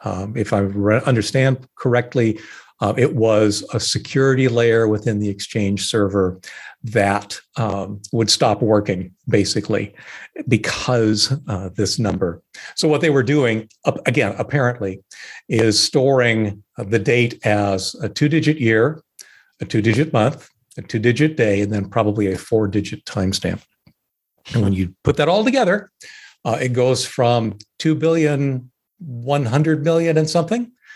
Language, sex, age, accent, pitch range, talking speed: English, male, 50-69, American, 100-130 Hz, 140 wpm